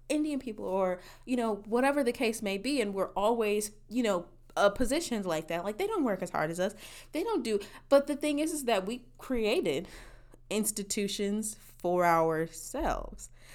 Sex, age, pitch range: female, 20-39, 180-250 Hz